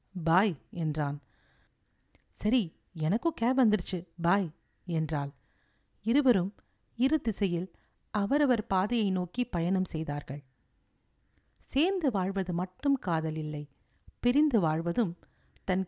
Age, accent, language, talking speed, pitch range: 50-69, native, Tamil, 90 wpm, 165-235 Hz